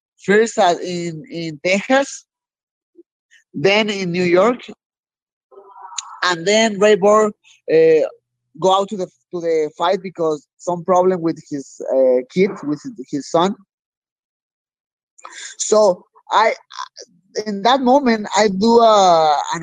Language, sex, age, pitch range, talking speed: English, male, 20-39, 170-215 Hz, 115 wpm